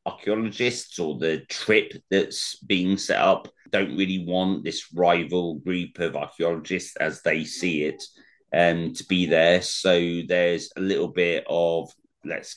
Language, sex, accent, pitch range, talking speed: English, male, British, 80-100 Hz, 150 wpm